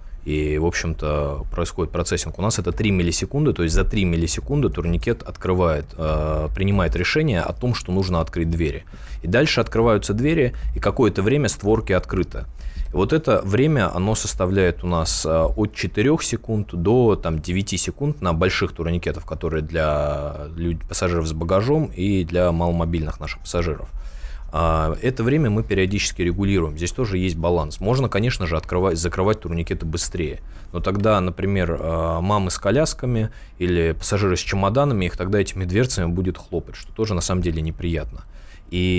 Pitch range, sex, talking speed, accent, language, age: 80-100 Hz, male, 150 wpm, native, Russian, 20-39